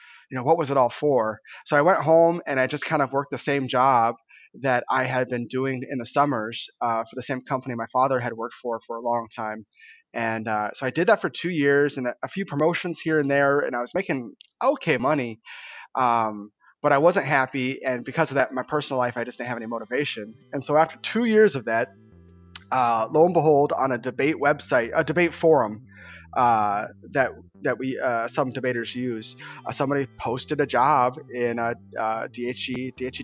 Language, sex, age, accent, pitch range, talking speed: English, male, 30-49, American, 120-155 Hz, 215 wpm